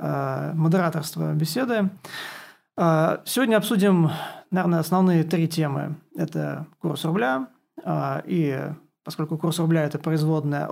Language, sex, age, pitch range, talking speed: Turkish, male, 30-49, 155-185 Hz, 100 wpm